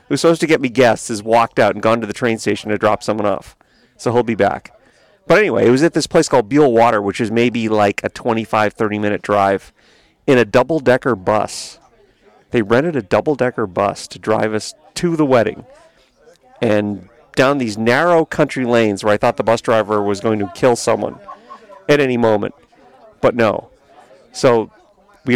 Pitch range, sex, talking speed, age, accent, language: 115-170 Hz, male, 190 wpm, 40-59, American, English